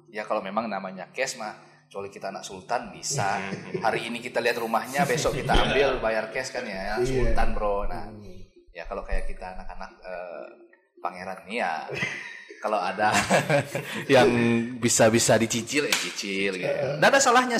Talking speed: 165 wpm